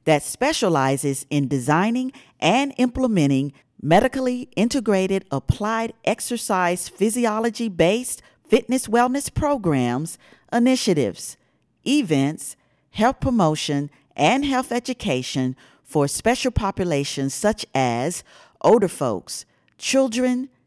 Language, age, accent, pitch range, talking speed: English, 50-69, American, 140-235 Hz, 85 wpm